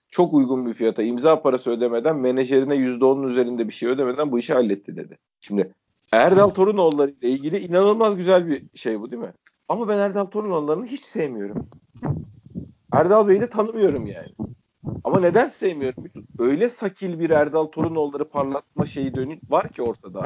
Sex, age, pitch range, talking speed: male, 50-69, 135-185 Hz, 155 wpm